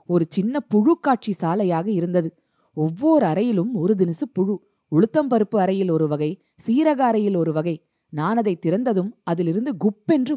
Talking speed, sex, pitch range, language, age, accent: 125 wpm, female, 175-245 Hz, Tamil, 20-39, native